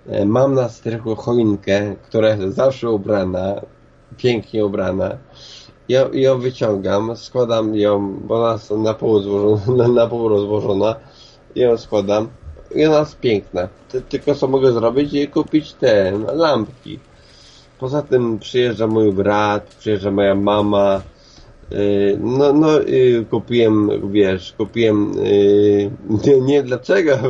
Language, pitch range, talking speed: Polish, 105-135 Hz, 115 wpm